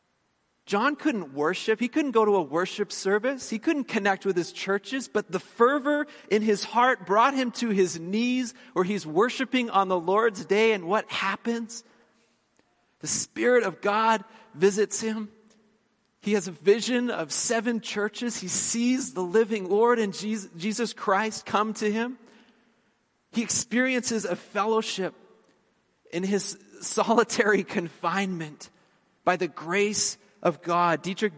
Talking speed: 140 wpm